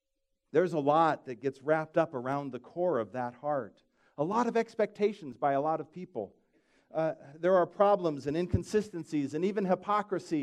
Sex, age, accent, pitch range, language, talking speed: male, 50-69, American, 140-190 Hz, English, 180 wpm